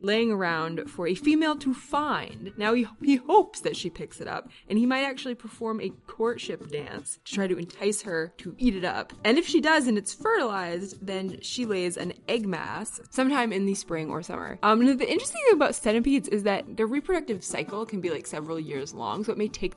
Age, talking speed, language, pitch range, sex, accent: 20-39, 220 wpm, English, 170-240 Hz, female, American